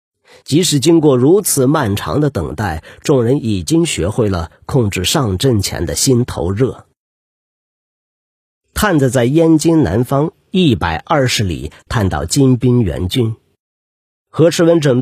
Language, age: Chinese, 50-69